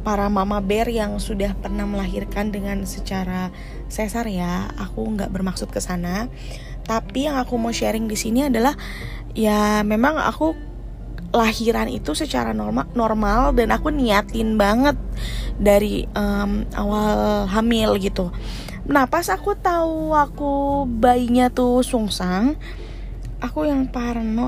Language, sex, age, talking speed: Indonesian, female, 20-39, 125 wpm